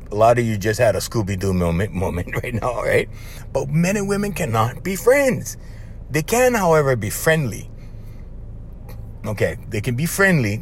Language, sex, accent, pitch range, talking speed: English, male, American, 110-170 Hz, 170 wpm